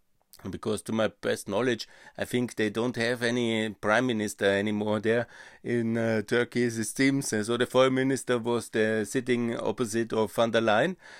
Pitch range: 110-130 Hz